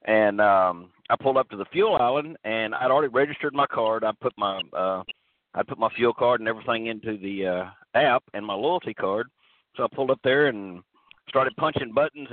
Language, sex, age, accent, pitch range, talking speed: English, male, 50-69, American, 100-130 Hz, 195 wpm